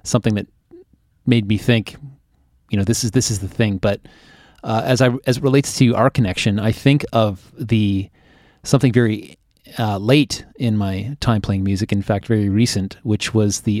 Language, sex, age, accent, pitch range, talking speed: English, male, 30-49, American, 100-120 Hz, 185 wpm